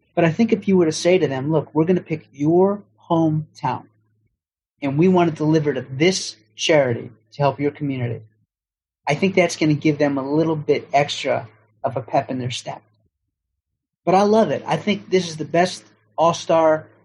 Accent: American